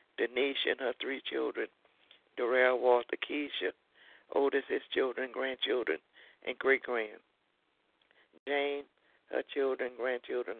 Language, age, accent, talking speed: English, 60-79, American, 110 wpm